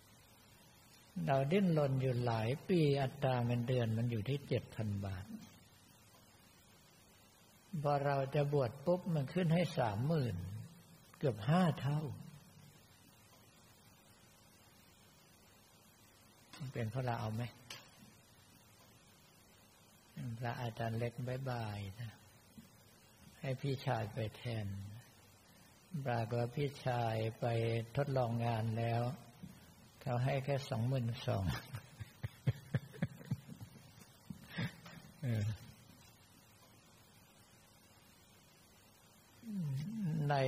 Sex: male